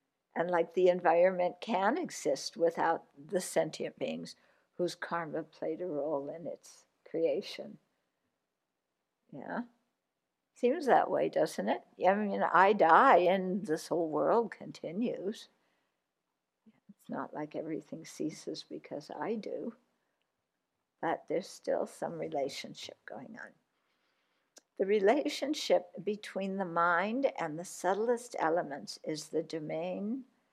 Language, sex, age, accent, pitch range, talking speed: English, female, 60-79, American, 170-235 Hz, 120 wpm